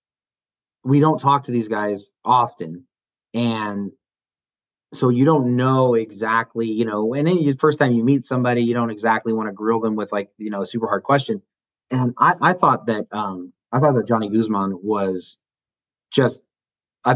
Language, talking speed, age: English, 180 wpm, 30-49